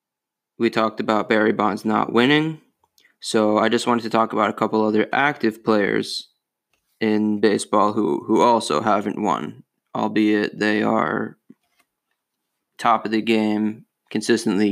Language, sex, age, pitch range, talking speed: English, male, 20-39, 105-115 Hz, 140 wpm